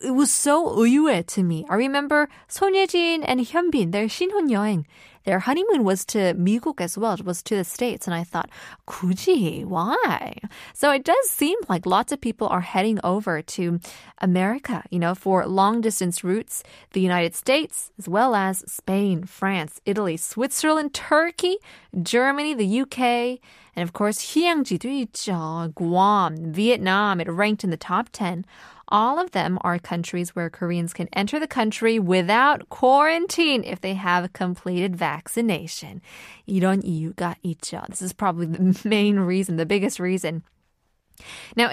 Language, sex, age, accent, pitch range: Korean, female, 20-39, American, 180-250 Hz